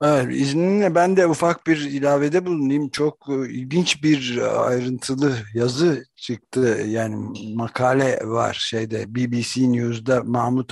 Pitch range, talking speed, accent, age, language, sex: 115-140 Hz, 120 wpm, native, 60-79, Turkish, male